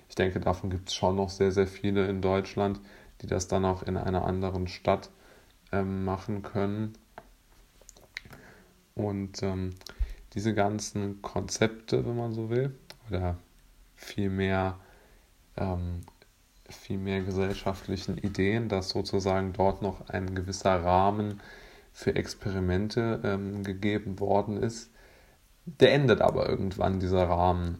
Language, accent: German, German